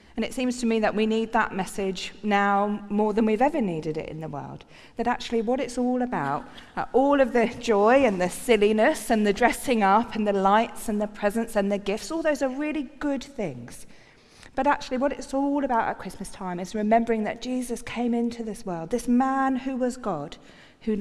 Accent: British